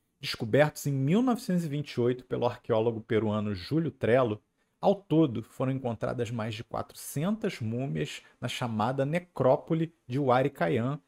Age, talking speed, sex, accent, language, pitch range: 40-59, 115 wpm, male, Brazilian, Portuguese, 125-175 Hz